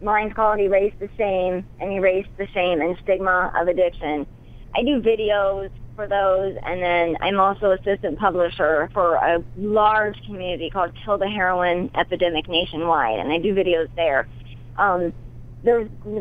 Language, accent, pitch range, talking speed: English, American, 170-215 Hz, 150 wpm